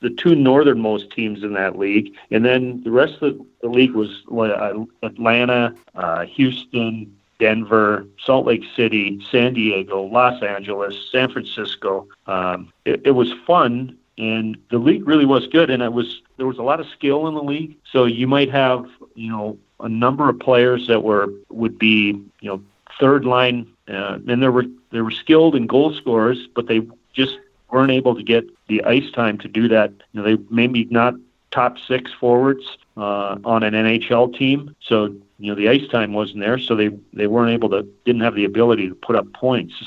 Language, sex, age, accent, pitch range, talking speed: English, male, 40-59, American, 105-125 Hz, 195 wpm